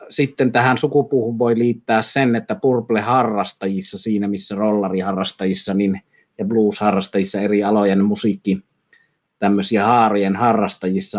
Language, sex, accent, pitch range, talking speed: Finnish, male, native, 100-110 Hz, 105 wpm